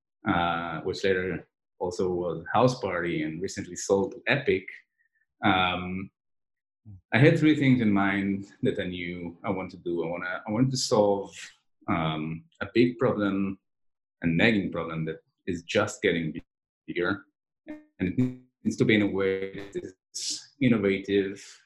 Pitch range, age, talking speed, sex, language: 95-125 Hz, 30-49, 150 wpm, male, English